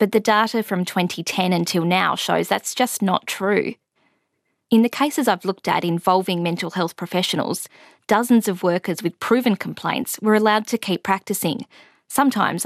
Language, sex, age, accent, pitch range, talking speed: English, female, 20-39, Australian, 180-230 Hz, 160 wpm